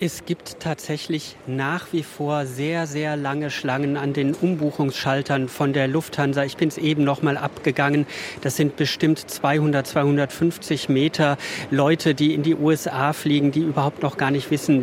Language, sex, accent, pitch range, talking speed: German, male, German, 140-165 Hz, 165 wpm